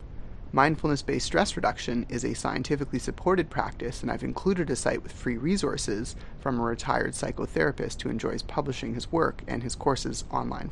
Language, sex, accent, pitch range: English, male, American, 125-175 Hz